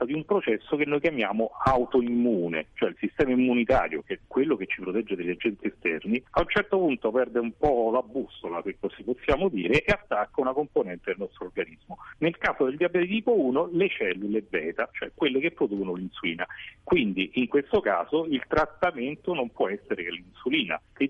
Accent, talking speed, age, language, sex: native, 190 wpm, 40-59, Italian, male